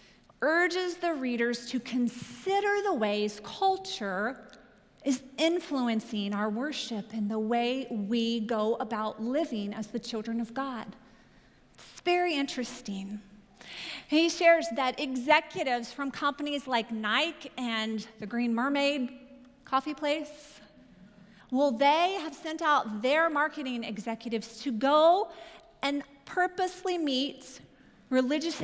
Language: English